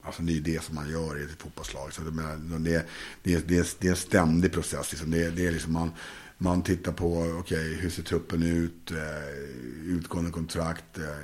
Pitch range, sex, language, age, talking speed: 80-90 Hz, male, Swedish, 50-69, 205 wpm